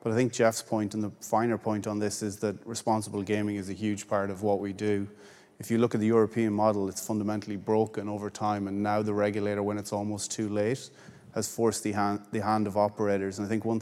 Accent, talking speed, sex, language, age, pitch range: Irish, 245 wpm, male, English, 30-49, 100-110 Hz